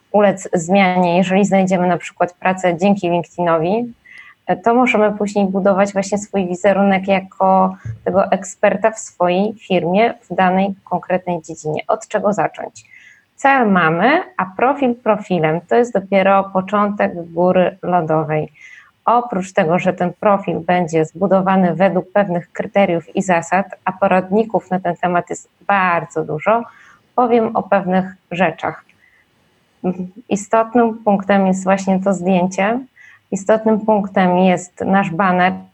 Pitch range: 180-210 Hz